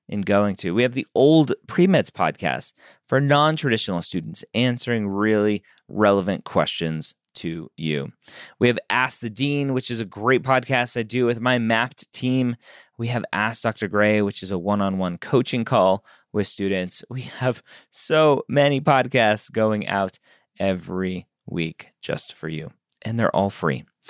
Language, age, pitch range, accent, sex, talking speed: English, 30-49, 95-120 Hz, American, male, 155 wpm